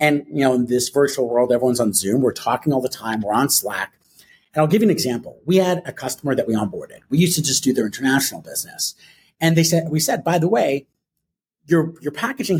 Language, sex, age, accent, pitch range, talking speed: English, male, 40-59, American, 130-180 Hz, 240 wpm